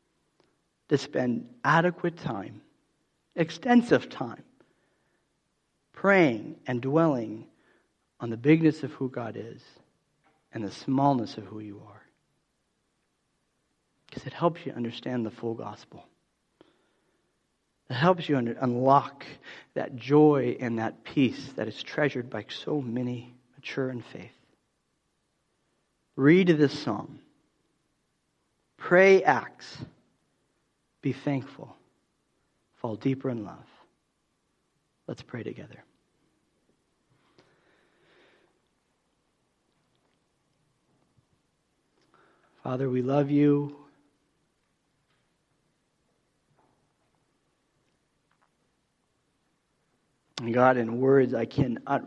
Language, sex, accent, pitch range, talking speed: English, male, American, 120-145 Hz, 85 wpm